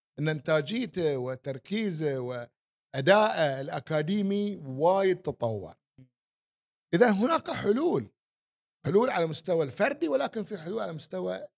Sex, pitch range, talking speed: male, 135-195 Hz, 100 wpm